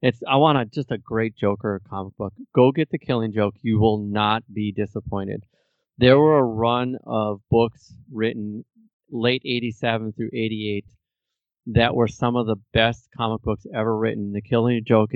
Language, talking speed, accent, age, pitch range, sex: English, 175 wpm, American, 30-49, 105-120 Hz, male